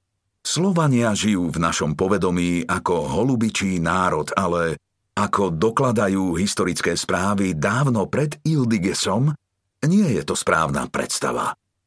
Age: 50-69